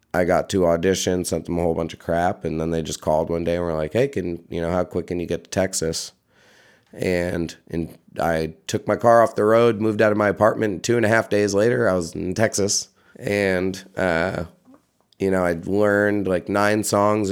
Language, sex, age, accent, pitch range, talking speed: English, male, 30-49, American, 85-110 Hz, 230 wpm